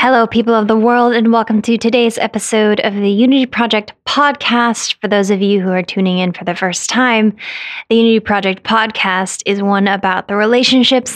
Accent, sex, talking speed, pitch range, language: American, female, 195 wpm, 195-245 Hz, English